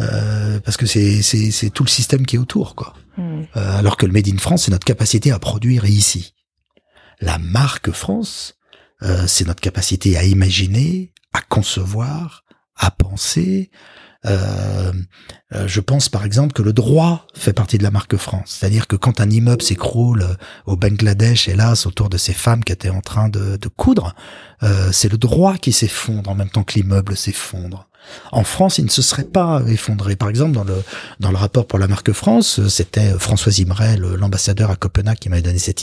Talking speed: 190 wpm